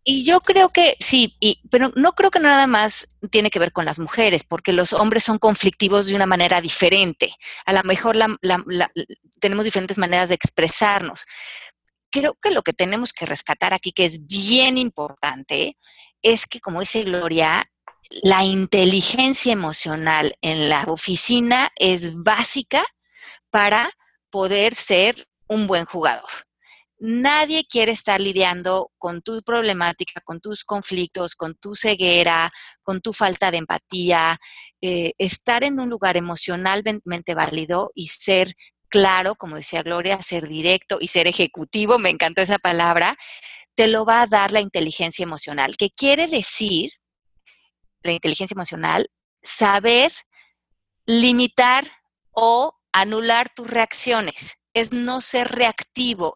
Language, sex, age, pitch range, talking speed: Spanish, female, 30-49, 175-230 Hz, 135 wpm